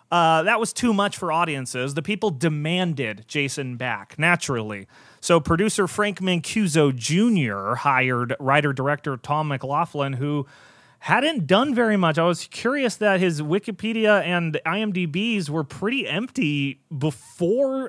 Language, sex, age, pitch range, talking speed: English, male, 30-49, 140-220 Hz, 130 wpm